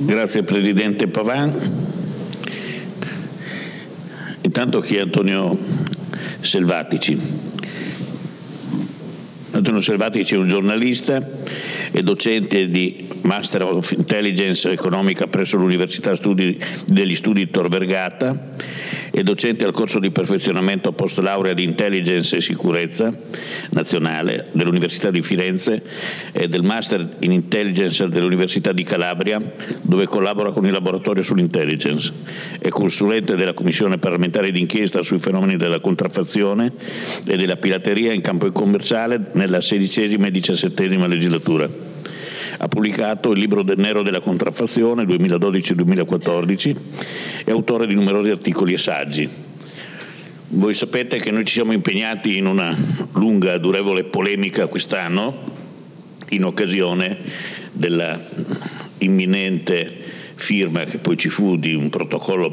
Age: 60-79